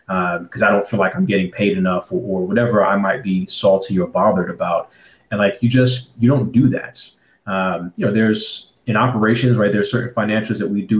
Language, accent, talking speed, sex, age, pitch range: English, American, 225 wpm, male, 30-49, 95-120 Hz